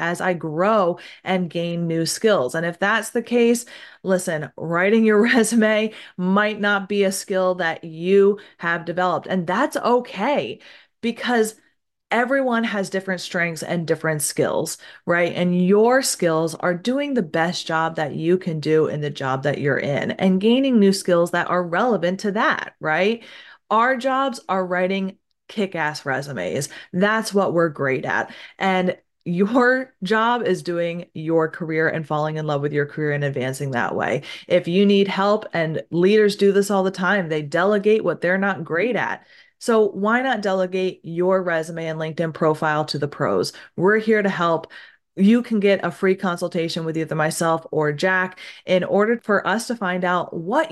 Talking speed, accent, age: 175 wpm, American, 30-49